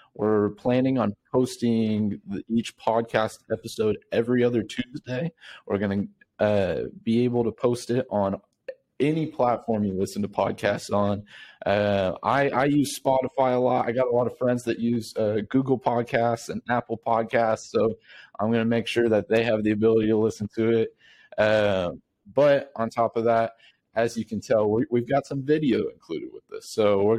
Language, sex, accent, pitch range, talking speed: English, male, American, 105-125 Hz, 180 wpm